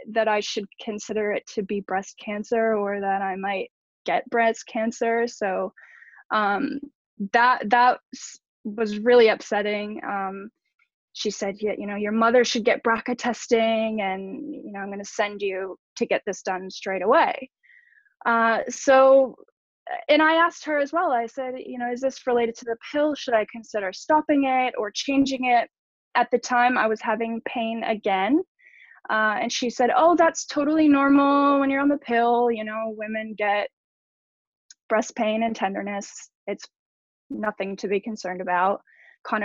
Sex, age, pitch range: female, 10-29, 210-275 Hz